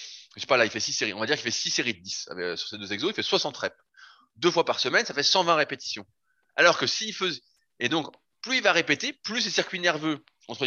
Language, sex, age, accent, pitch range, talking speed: French, male, 20-39, French, 115-190 Hz, 280 wpm